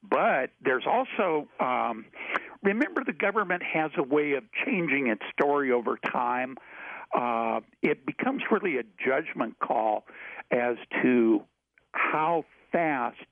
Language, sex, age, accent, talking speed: English, male, 60-79, American, 120 wpm